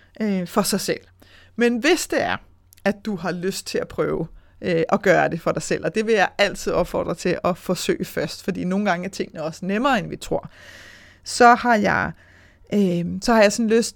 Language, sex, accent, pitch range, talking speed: Danish, female, native, 175-225 Hz, 200 wpm